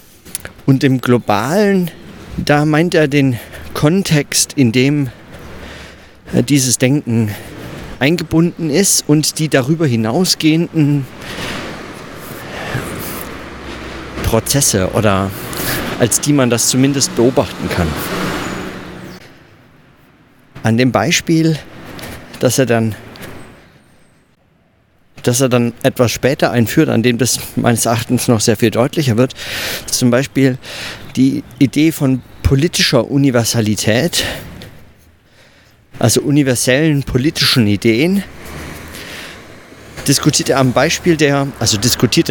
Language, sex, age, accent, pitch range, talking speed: German, male, 50-69, German, 115-145 Hz, 95 wpm